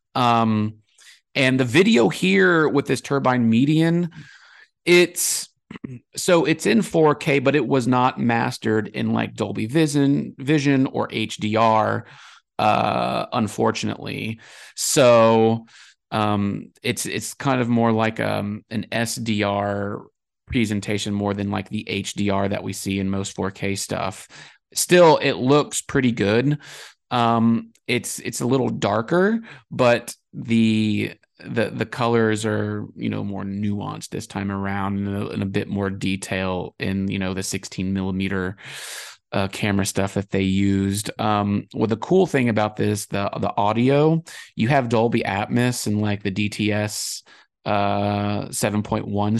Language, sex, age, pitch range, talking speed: English, male, 30-49, 100-125 Hz, 140 wpm